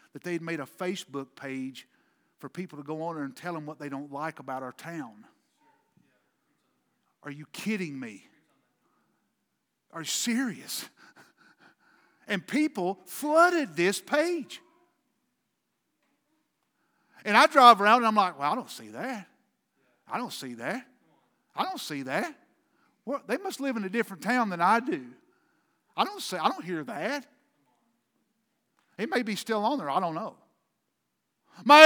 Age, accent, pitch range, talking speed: 50-69, American, 180-280 Hz, 150 wpm